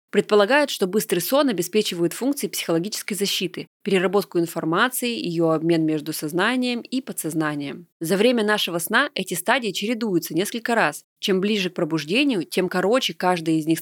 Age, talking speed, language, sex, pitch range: 20-39, 150 wpm, Russian, female, 170-220 Hz